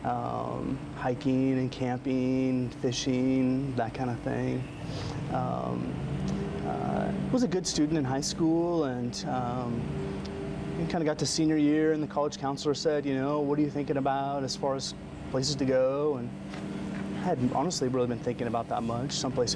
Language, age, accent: English, 30-49, American